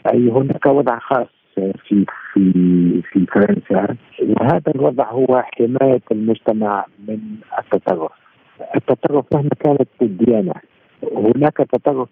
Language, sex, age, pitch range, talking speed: Arabic, male, 50-69, 105-130 Hz, 110 wpm